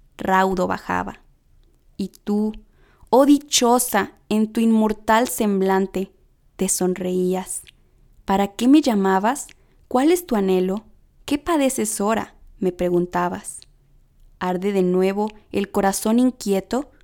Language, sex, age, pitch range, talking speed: Spanish, female, 20-39, 195-245 Hz, 110 wpm